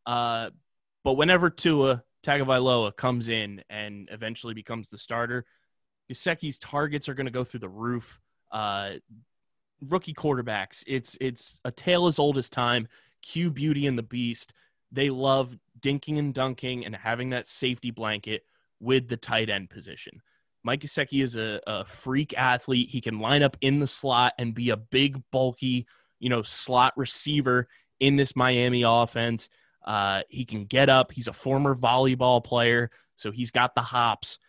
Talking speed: 165 wpm